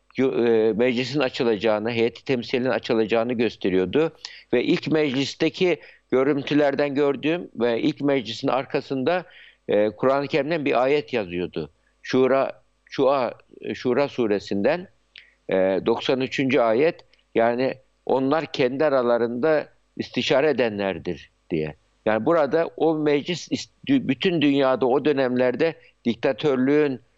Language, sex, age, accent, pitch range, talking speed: Turkish, male, 60-79, native, 115-150 Hz, 95 wpm